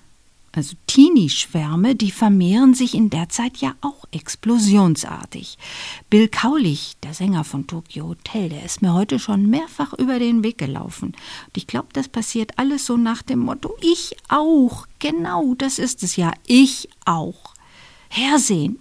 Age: 50-69